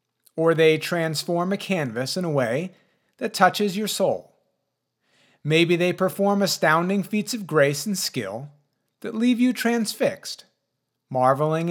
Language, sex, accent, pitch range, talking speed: English, male, American, 145-205 Hz, 135 wpm